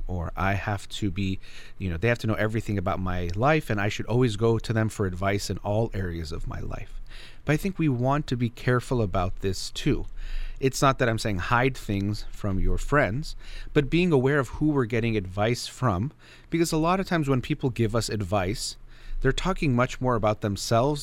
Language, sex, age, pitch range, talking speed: English, male, 30-49, 100-130 Hz, 215 wpm